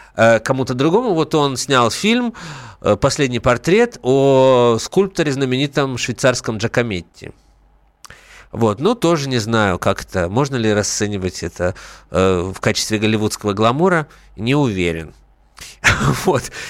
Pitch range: 110-140 Hz